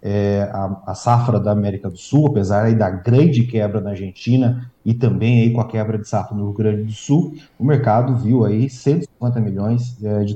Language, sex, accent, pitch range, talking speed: Portuguese, male, Brazilian, 110-130 Hz, 210 wpm